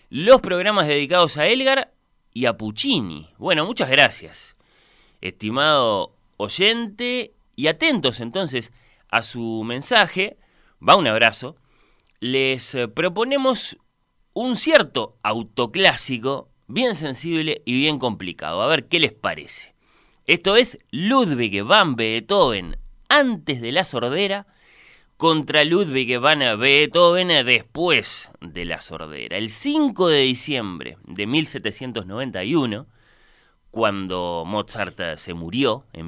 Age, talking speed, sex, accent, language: 30-49, 110 wpm, male, Argentinian, Spanish